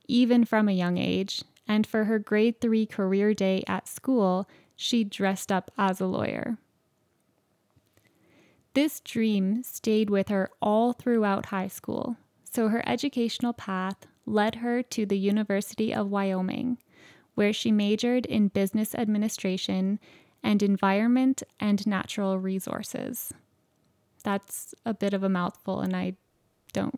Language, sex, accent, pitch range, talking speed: English, female, American, 195-235 Hz, 135 wpm